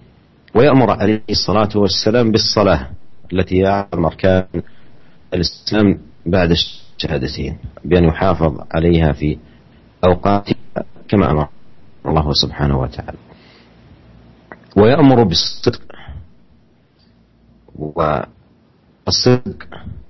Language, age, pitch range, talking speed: Indonesian, 40-59, 80-95 Hz, 70 wpm